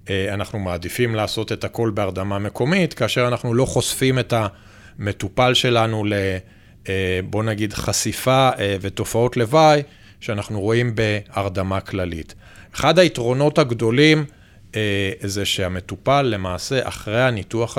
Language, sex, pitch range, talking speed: English, male, 105-135 Hz, 105 wpm